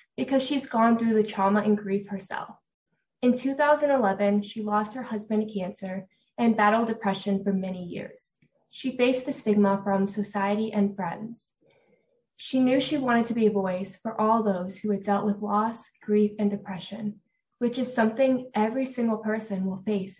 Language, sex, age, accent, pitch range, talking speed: English, female, 20-39, American, 205-240 Hz, 170 wpm